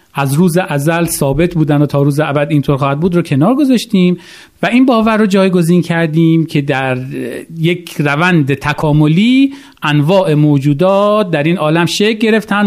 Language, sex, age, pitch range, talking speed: Persian, male, 40-59, 130-185 Hz, 155 wpm